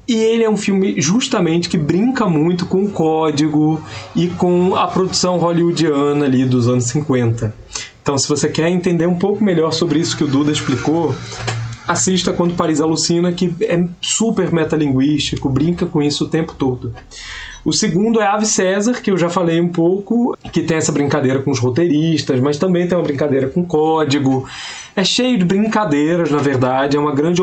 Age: 20-39